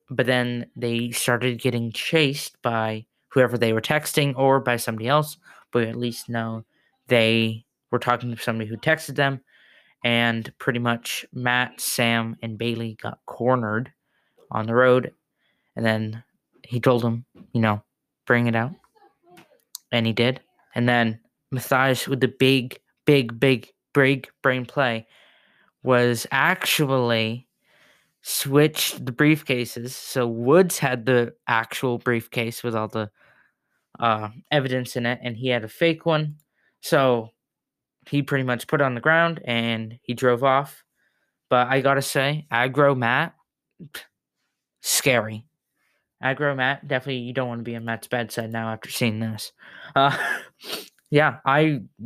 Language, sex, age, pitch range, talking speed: English, male, 20-39, 115-140 Hz, 145 wpm